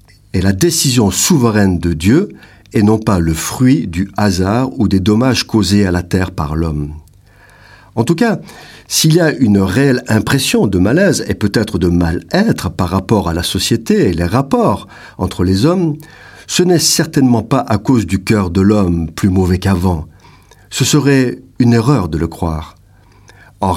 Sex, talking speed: male, 175 wpm